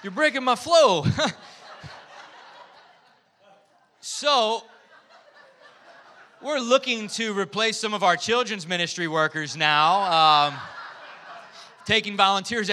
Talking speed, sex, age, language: 90 wpm, male, 20-39, English